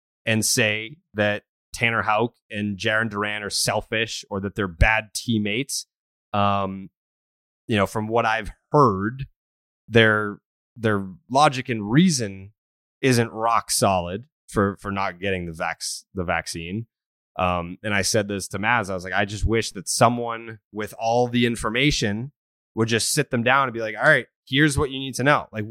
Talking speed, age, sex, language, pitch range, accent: 175 wpm, 20-39, male, English, 100-135 Hz, American